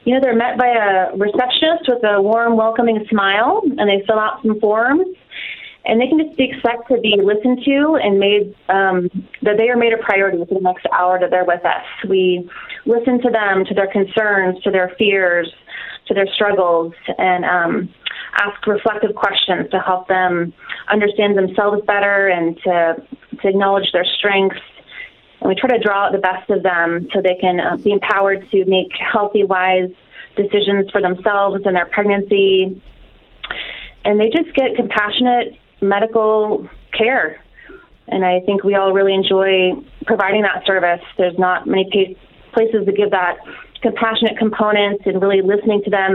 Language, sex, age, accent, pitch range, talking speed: English, female, 30-49, American, 185-220 Hz, 170 wpm